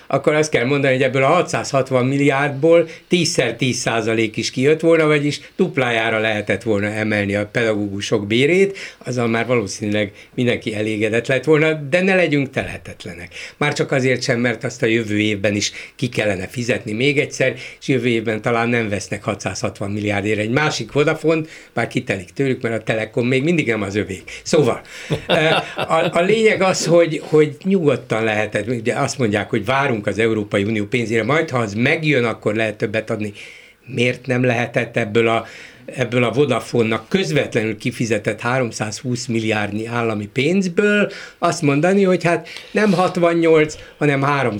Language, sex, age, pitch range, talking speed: Hungarian, male, 60-79, 110-150 Hz, 155 wpm